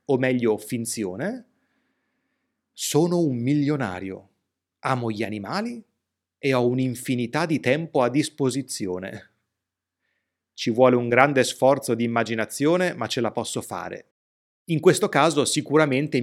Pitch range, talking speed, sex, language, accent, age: 110-155 Hz, 120 wpm, male, Italian, native, 30-49